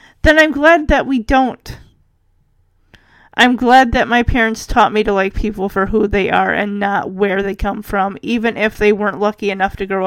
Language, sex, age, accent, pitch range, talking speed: English, female, 30-49, American, 200-280 Hz, 205 wpm